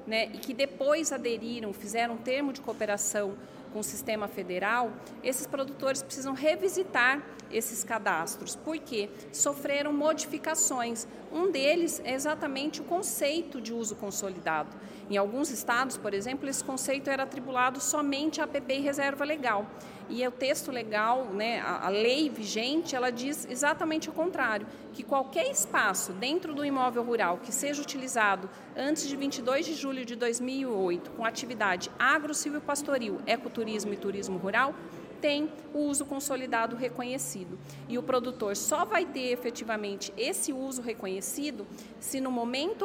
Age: 40-59